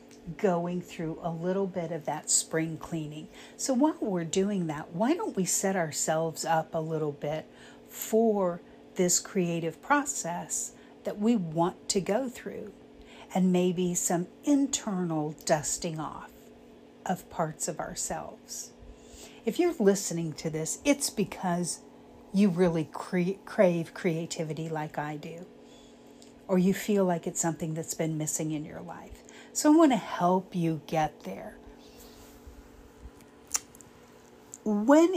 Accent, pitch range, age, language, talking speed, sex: American, 160-220 Hz, 50-69, English, 135 wpm, female